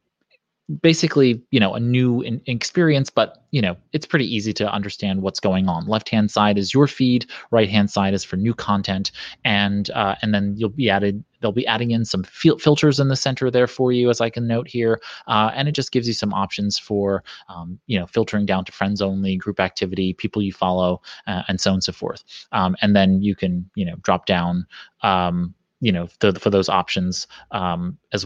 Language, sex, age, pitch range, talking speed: English, male, 20-39, 95-115 Hz, 210 wpm